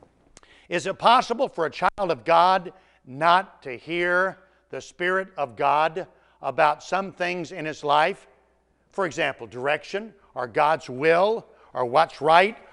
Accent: American